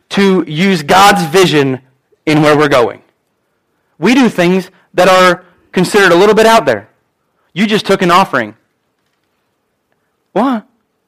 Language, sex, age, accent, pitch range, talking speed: English, male, 30-49, American, 185-270 Hz, 135 wpm